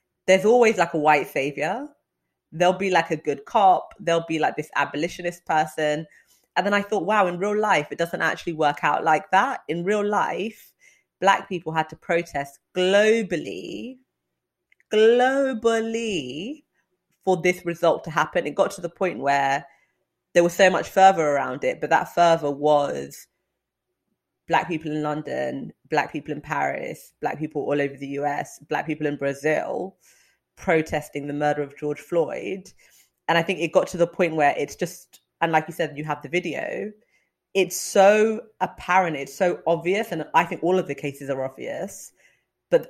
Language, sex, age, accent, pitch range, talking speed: English, female, 30-49, British, 150-195 Hz, 175 wpm